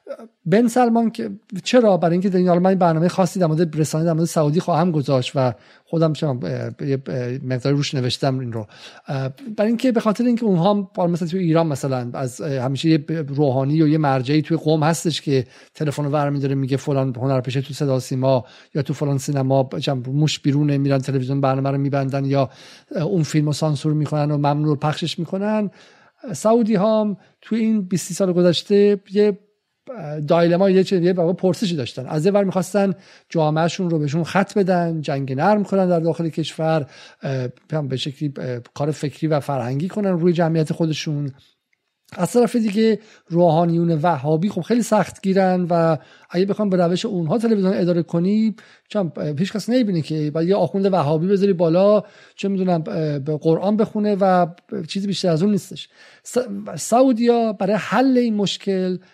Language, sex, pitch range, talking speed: Persian, male, 145-200 Hz, 165 wpm